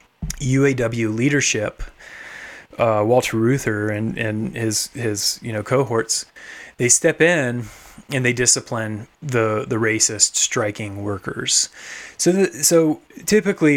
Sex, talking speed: male, 120 wpm